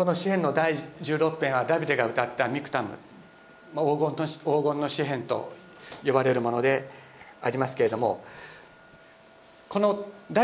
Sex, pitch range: male, 130-175 Hz